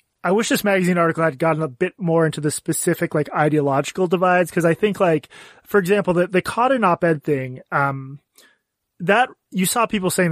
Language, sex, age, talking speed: English, male, 20-39, 205 wpm